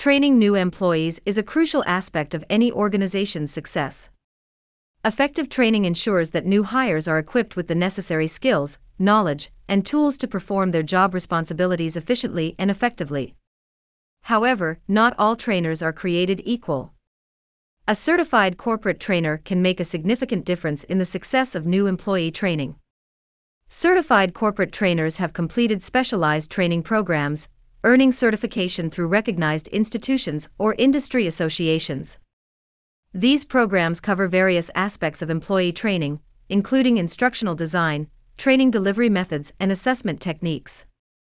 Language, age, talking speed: English, 40-59, 130 wpm